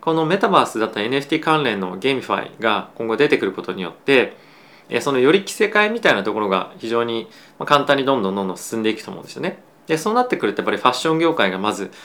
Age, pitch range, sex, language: 20-39, 110-145 Hz, male, Japanese